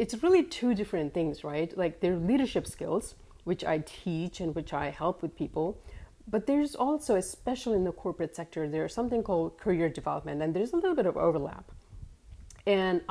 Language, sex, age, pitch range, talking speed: English, female, 30-49, 155-215 Hz, 190 wpm